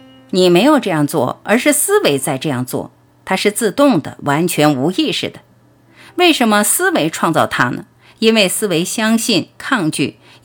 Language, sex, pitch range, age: Chinese, female, 140-230 Hz, 50-69